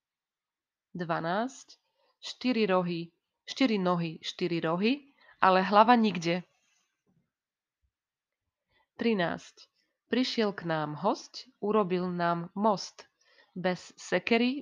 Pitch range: 170-225 Hz